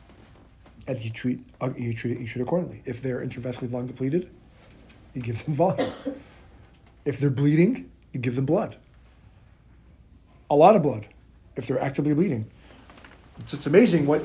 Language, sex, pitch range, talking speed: English, male, 120-155 Hz, 155 wpm